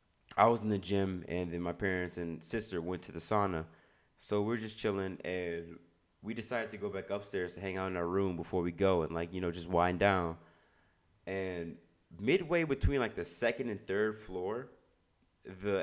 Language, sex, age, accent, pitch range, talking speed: English, male, 20-39, American, 90-100 Hz, 200 wpm